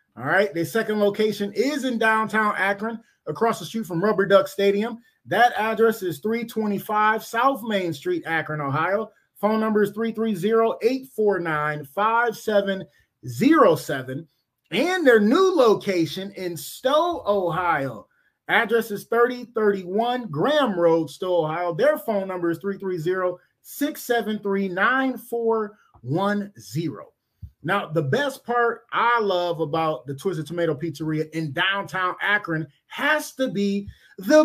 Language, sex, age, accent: English, male, 30-49, American